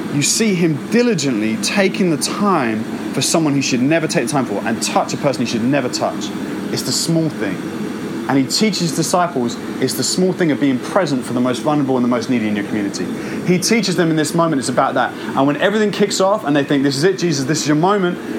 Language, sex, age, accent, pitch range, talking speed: English, male, 30-49, British, 125-170 Hz, 250 wpm